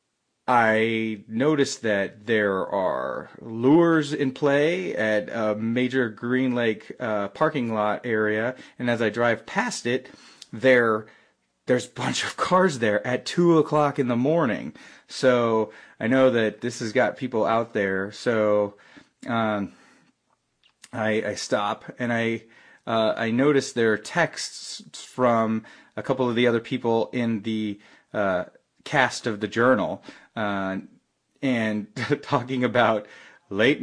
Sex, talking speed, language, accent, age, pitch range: male, 140 wpm, English, American, 30-49, 105-130 Hz